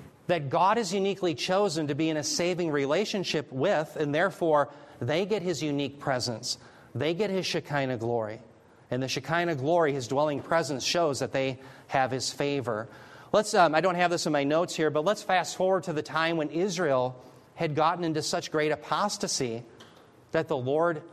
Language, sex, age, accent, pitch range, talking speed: English, male, 40-59, American, 130-170 Hz, 185 wpm